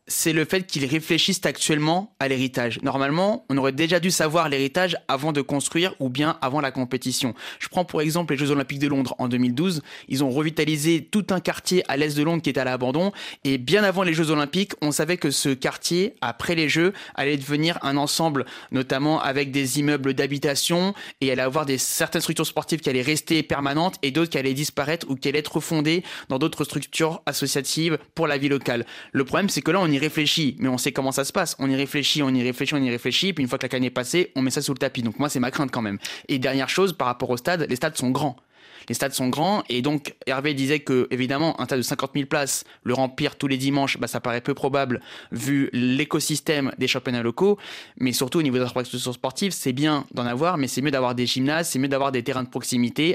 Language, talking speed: French, 240 wpm